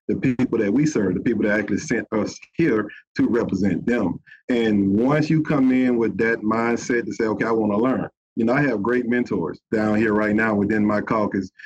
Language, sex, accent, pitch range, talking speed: English, male, American, 105-115 Hz, 220 wpm